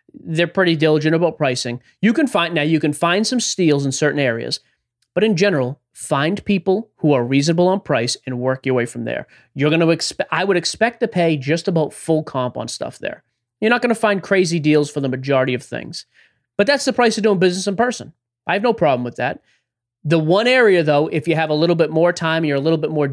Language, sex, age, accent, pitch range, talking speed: English, male, 30-49, American, 130-170 Hz, 240 wpm